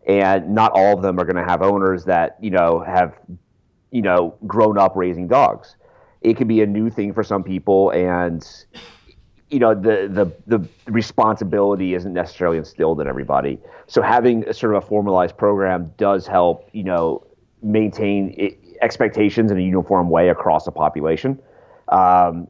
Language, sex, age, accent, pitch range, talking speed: English, male, 30-49, American, 85-100 Hz, 170 wpm